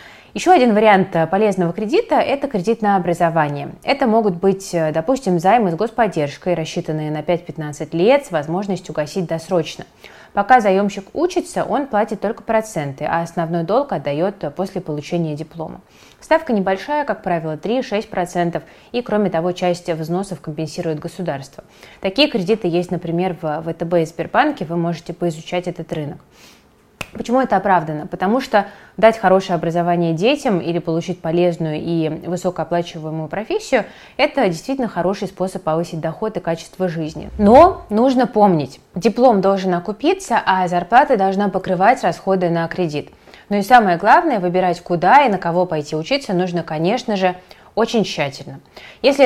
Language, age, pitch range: Russian, 20-39, 165-210 Hz